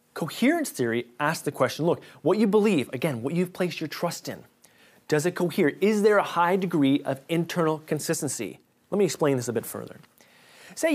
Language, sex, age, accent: English, male, 30-49, American